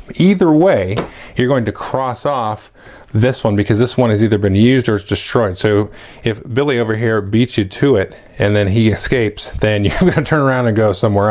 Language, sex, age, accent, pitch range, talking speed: English, male, 30-49, American, 100-120 Hz, 220 wpm